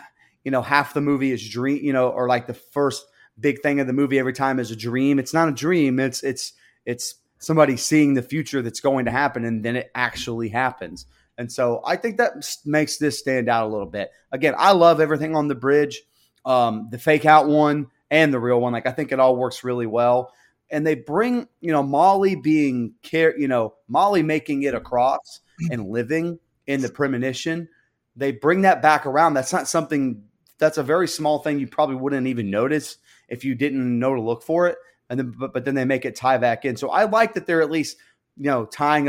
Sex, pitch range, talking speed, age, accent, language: male, 125-150 Hz, 225 wpm, 30-49, American, English